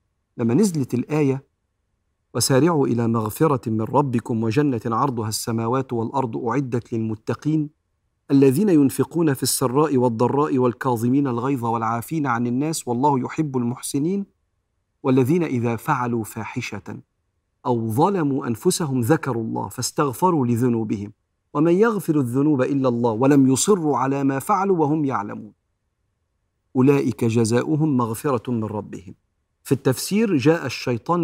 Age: 50-69